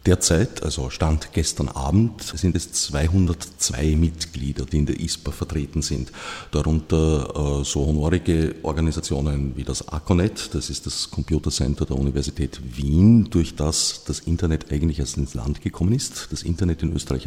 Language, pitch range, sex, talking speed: German, 70-90 Hz, male, 155 wpm